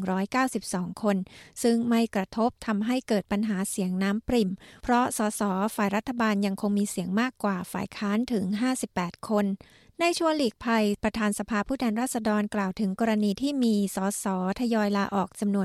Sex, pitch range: female, 200-235 Hz